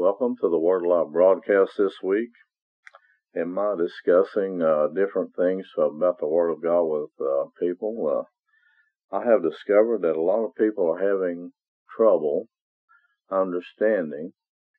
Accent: American